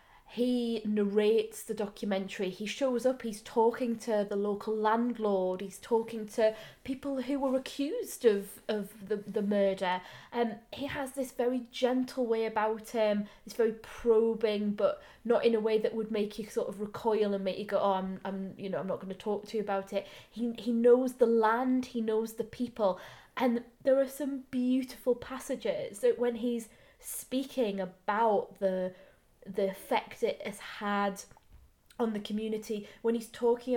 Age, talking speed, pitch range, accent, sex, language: 20-39, 180 wpm, 205-240 Hz, British, female, English